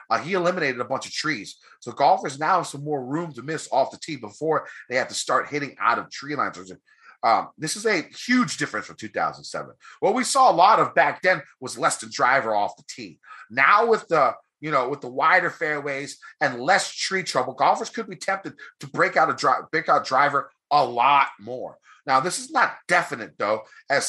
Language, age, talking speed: English, 30-49, 215 wpm